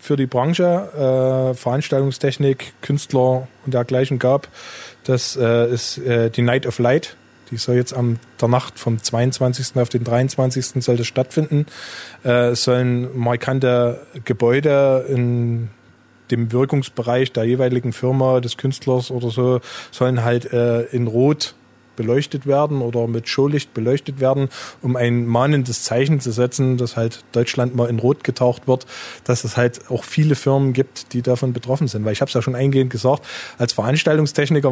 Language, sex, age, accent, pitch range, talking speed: German, male, 20-39, German, 120-140 Hz, 160 wpm